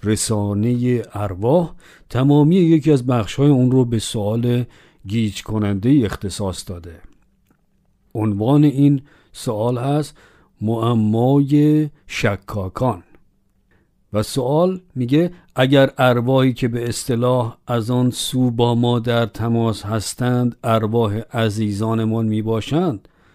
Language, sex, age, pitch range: Persian, male, 50-69, 105-135 Hz